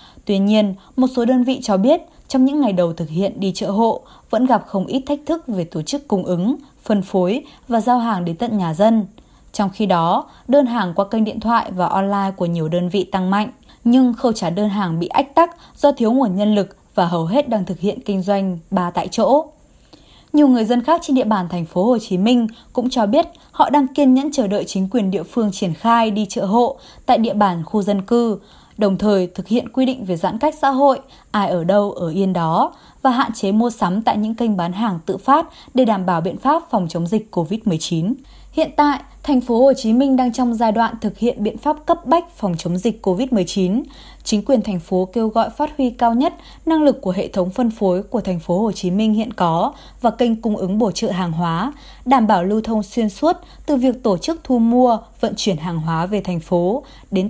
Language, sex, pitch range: Vietnamese, female, 195-255 Hz